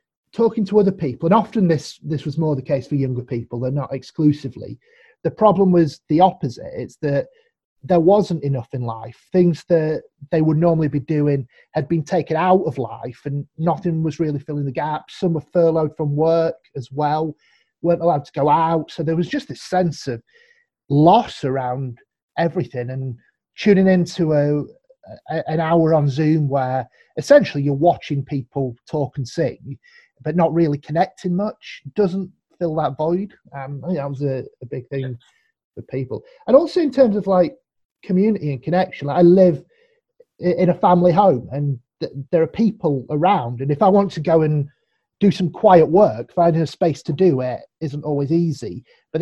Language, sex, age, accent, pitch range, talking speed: English, male, 30-49, British, 145-190 Hz, 185 wpm